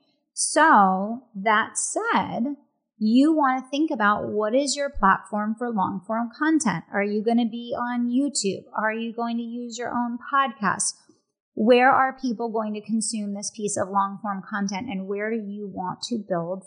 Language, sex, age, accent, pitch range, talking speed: English, female, 30-49, American, 195-235 Hz, 180 wpm